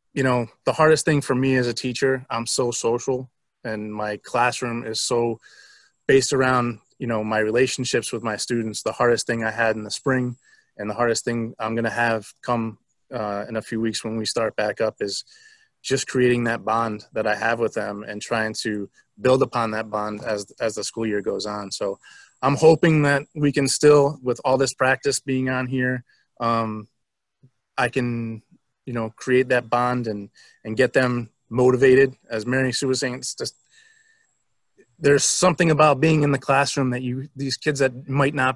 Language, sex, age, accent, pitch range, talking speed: English, male, 20-39, American, 115-135 Hz, 195 wpm